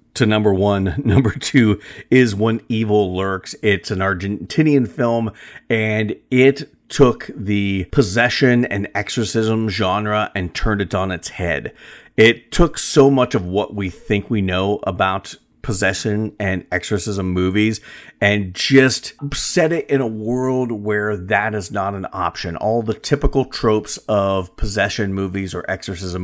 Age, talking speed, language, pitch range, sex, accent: 40-59, 145 wpm, English, 95-120 Hz, male, American